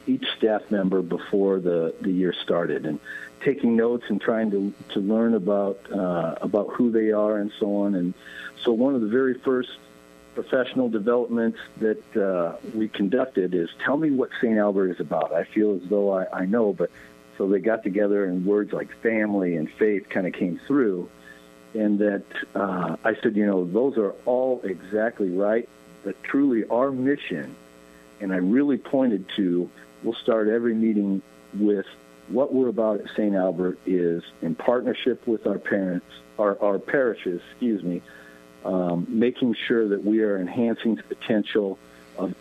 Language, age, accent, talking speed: English, 50-69, American, 170 wpm